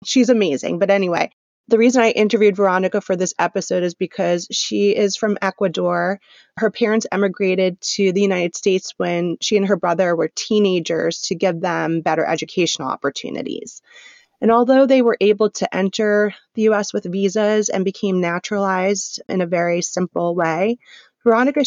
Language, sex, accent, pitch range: English, female, American, 175-210 Hz